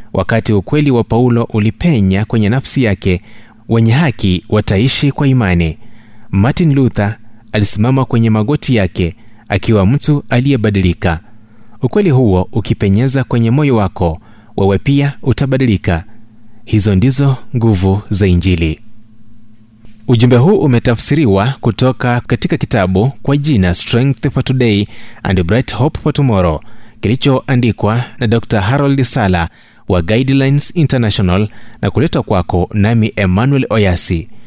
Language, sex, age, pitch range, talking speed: Swahili, male, 30-49, 100-130 Hz, 115 wpm